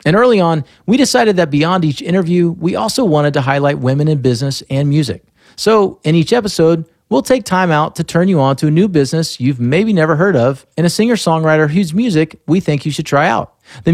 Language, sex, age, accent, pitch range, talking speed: English, male, 40-59, American, 130-180 Hz, 225 wpm